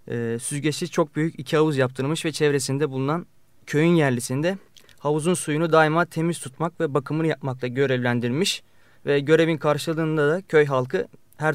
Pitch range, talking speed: 140-185 Hz, 140 wpm